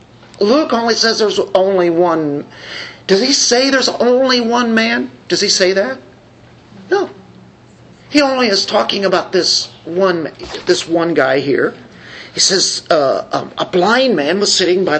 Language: English